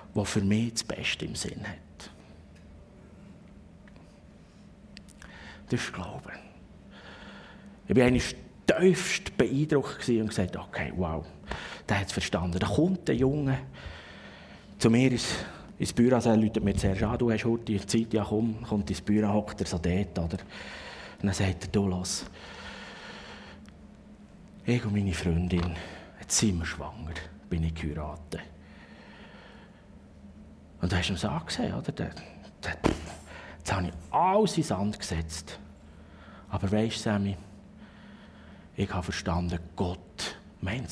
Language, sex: German, male